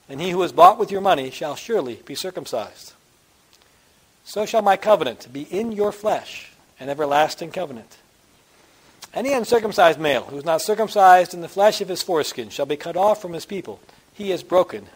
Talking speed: 185 wpm